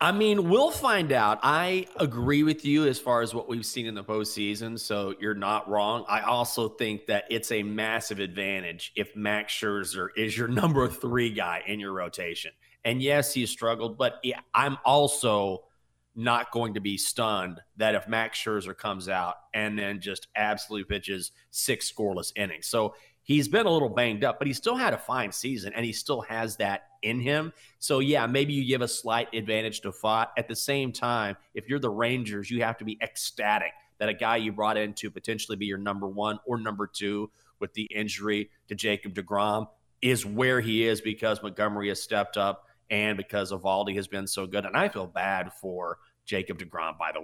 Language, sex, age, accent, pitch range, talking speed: English, male, 30-49, American, 100-120 Hz, 200 wpm